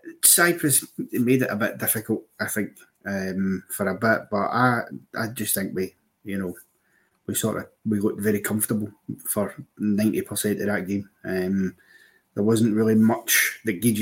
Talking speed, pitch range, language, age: 170 wpm, 110-125 Hz, English, 30-49